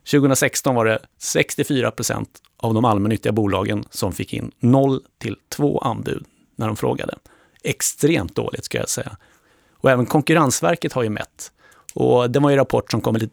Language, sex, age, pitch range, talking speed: Swedish, male, 30-49, 105-140 Hz, 160 wpm